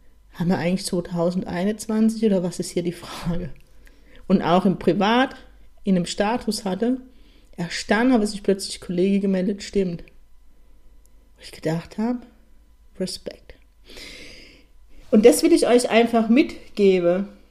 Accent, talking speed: German, 125 wpm